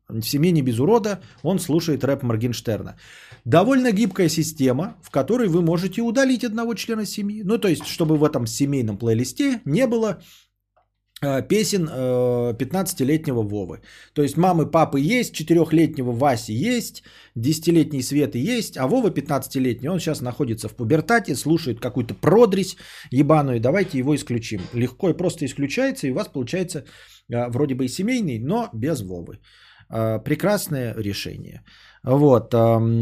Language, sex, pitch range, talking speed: Bulgarian, male, 115-170 Hz, 145 wpm